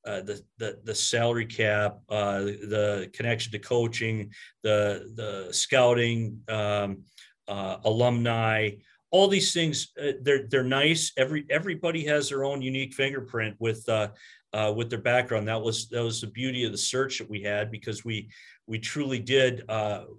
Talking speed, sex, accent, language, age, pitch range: 160 wpm, male, American, English, 40-59, 110-130 Hz